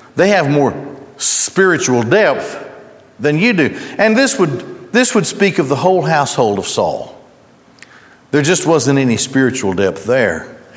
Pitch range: 130-180 Hz